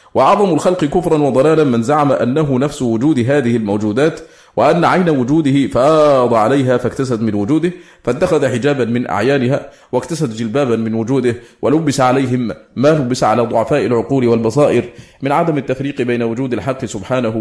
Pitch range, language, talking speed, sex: 120-145 Hz, English, 145 wpm, male